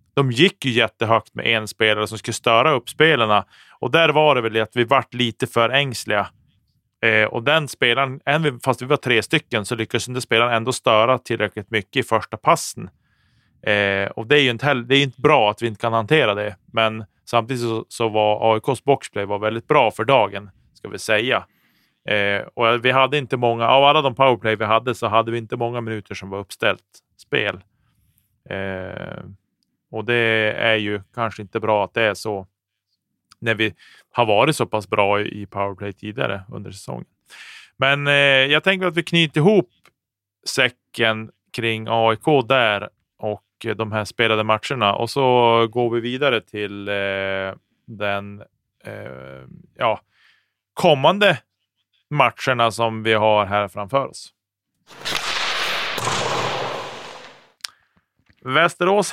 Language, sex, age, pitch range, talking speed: Swedish, male, 30-49, 105-130 Hz, 155 wpm